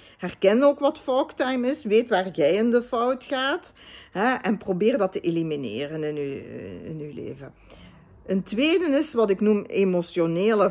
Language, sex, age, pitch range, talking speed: Dutch, female, 50-69, 170-235 Hz, 175 wpm